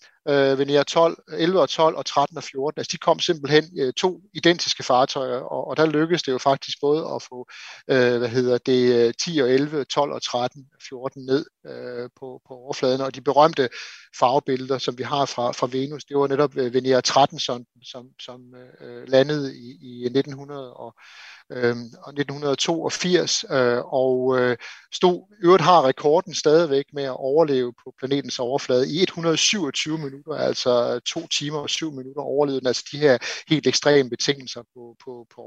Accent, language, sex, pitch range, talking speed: native, Danish, male, 125-155 Hz, 150 wpm